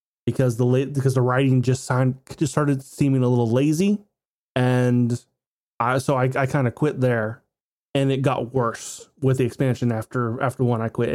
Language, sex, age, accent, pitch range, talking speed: English, male, 20-39, American, 125-150 Hz, 190 wpm